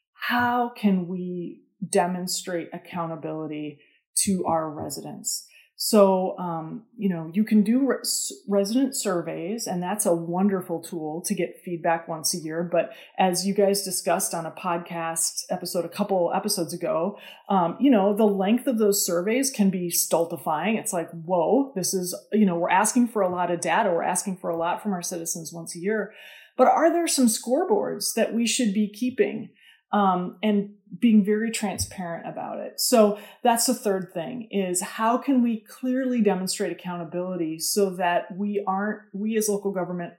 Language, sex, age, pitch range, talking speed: English, female, 30-49, 175-215 Hz, 170 wpm